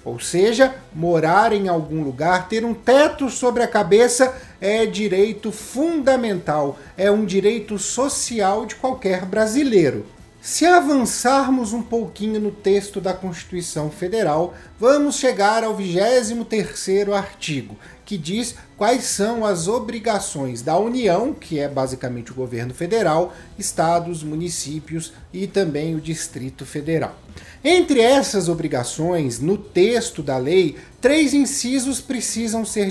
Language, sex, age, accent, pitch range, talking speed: Portuguese, male, 40-59, Brazilian, 165-230 Hz, 125 wpm